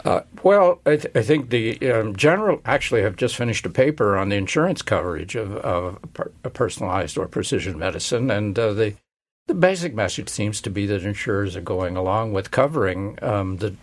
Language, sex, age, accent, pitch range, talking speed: English, male, 60-79, American, 95-115 Hz, 190 wpm